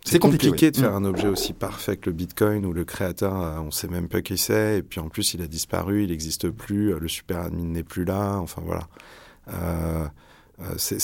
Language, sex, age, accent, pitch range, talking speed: French, male, 30-49, French, 95-120 Hz, 225 wpm